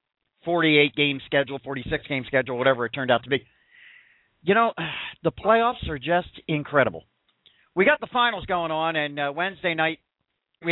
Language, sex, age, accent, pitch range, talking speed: English, male, 50-69, American, 130-165 Hz, 155 wpm